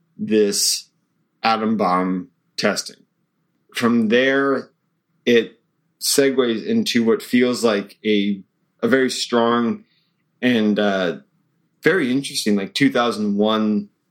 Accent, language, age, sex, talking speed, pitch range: American, English, 30-49, male, 95 wpm, 105-135 Hz